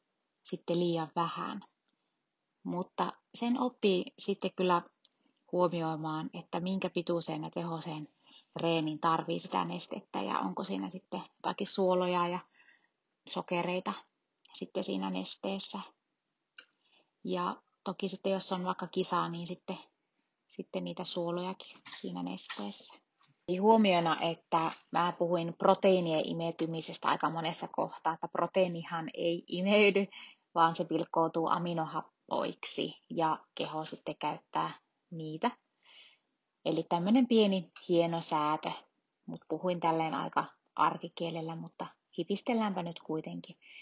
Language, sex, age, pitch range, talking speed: Finnish, female, 30-49, 165-185 Hz, 105 wpm